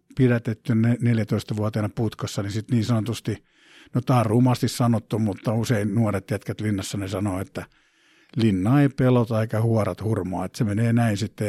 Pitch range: 105-120 Hz